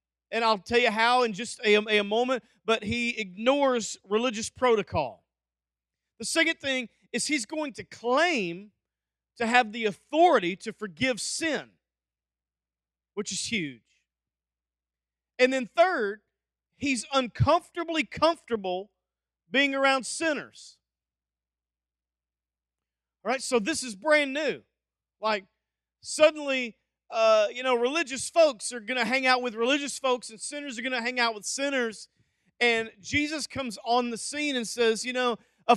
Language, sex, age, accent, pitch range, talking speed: English, male, 40-59, American, 170-265 Hz, 140 wpm